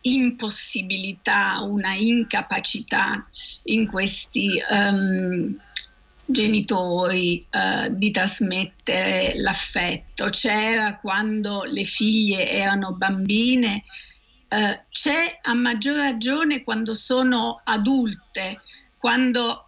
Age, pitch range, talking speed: 50-69, 205-245 Hz, 80 wpm